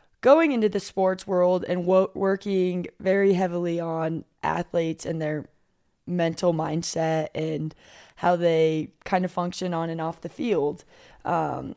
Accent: American